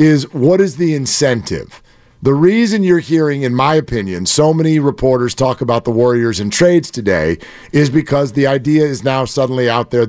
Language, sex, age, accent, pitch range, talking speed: English, male, 50-69, American, 130-180 Hz, 185 wpm